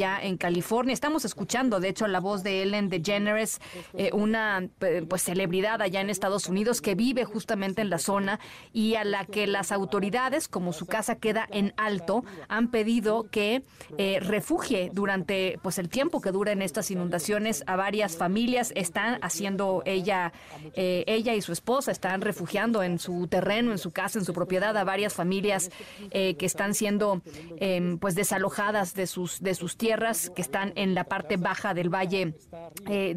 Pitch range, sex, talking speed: 185-215 Hz, female, 175 wpm